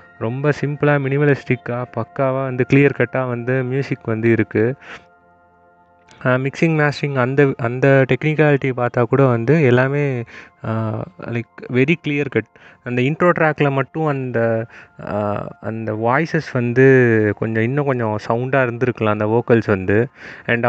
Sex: male